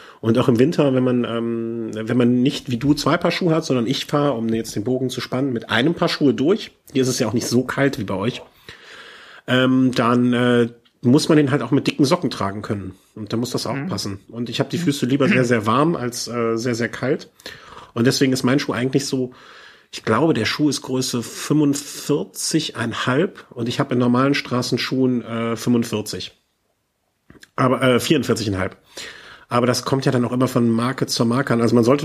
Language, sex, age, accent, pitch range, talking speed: German, male, 40-59, German, 115-135 Hz, 215 wpm